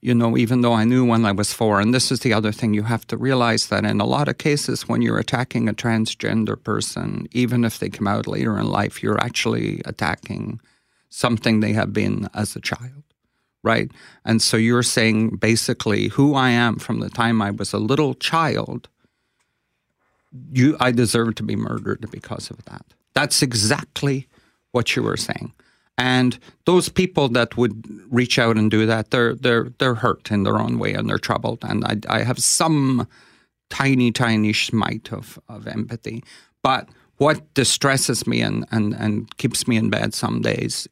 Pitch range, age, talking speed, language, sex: 110-125 Hz, 40-59, 185 wpm, English, male